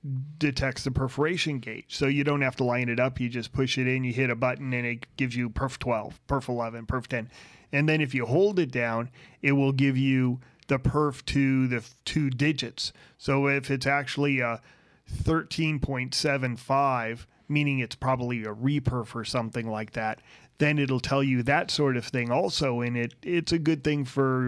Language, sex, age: English, male, 30-49